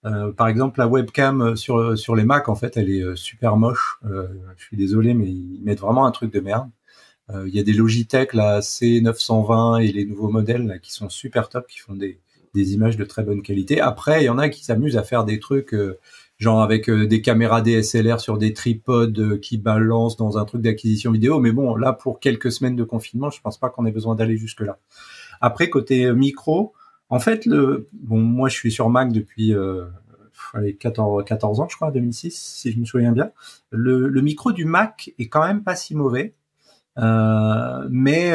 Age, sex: 30-49, male